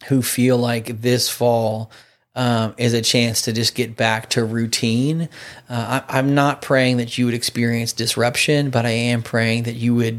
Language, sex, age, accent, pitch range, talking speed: English, male, 30-49, American, 115-125 Hz, 185 wpm